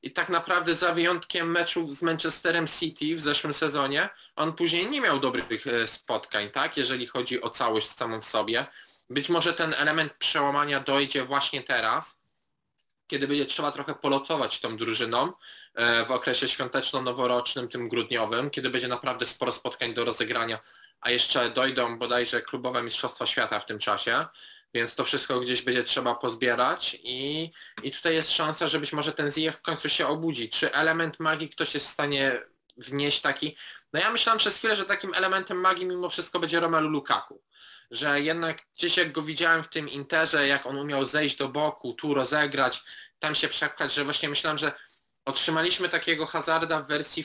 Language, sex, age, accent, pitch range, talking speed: Polish, male, 20-39, native, 135-165 Hz, 170 wpm